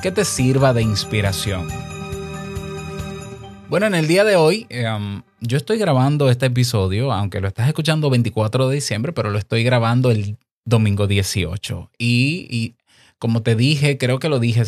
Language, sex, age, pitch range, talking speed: Spanish, male, 20-39, 110-130 Hz, 165 wpm